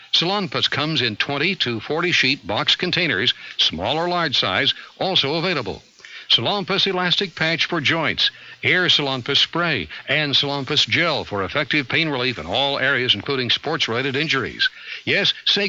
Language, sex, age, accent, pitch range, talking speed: English, male, 60-79, American, 120-165 Hz, 140 wpm